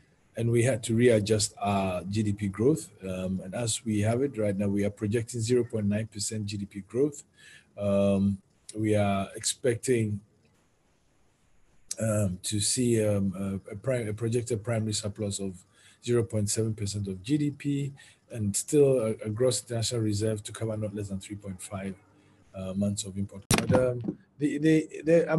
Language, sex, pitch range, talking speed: English, male, 100-125 Hz, 150 wpm